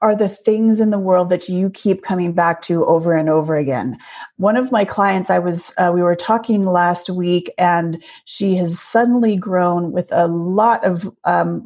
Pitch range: 180-220 Hz